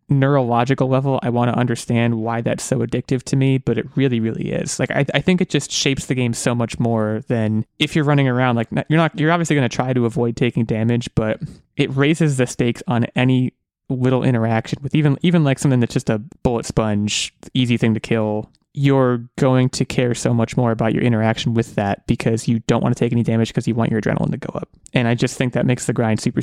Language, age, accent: English, 20-39, American